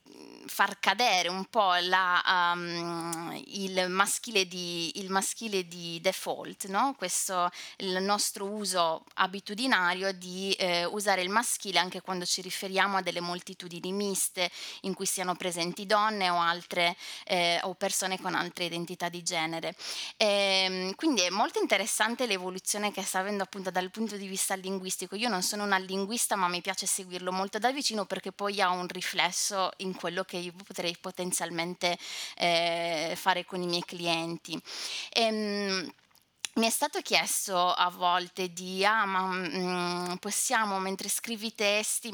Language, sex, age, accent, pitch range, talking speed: Italian, female, 20-39, native, 180-200 Hz, 155 wpm